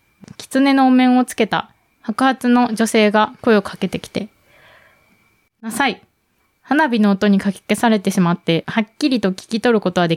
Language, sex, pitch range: Japanese, female, 195-245 Hz